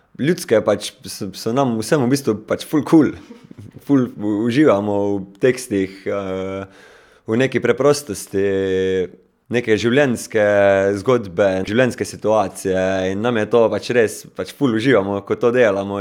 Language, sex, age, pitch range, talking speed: German, male, 20-39, 100-120 Hz, 125 wpm